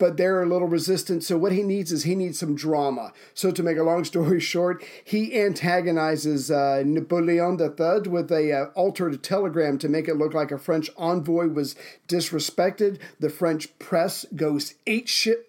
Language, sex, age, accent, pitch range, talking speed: English, male, 50-69, American, 155-180 Hz, 180 wpm